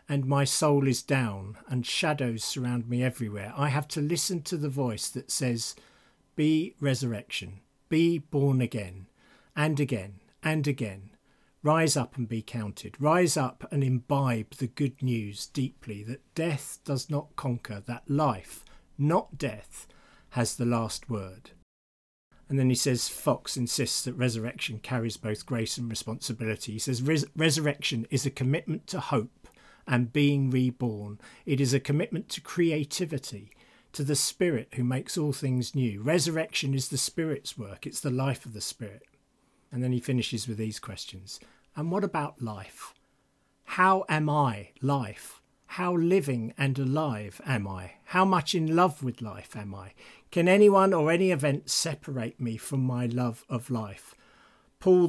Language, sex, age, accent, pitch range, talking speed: English, male, 50-69, British, 115-150 Hz, 160 wpm